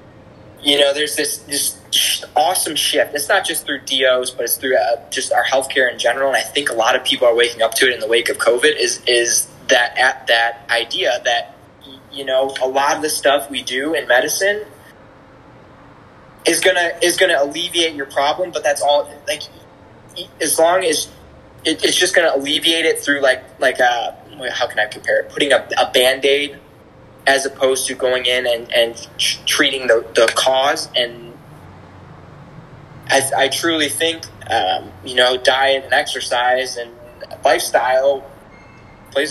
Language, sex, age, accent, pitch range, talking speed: English, male, 20-39, American, 120-150 Hz, 175 wpm